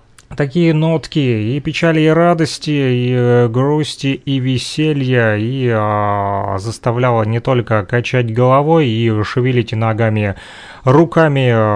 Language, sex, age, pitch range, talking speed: Russian, male, 30-49, 115-150 Hz, 105 wpm